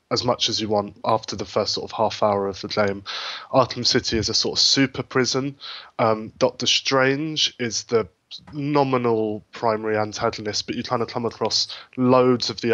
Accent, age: British, 20-39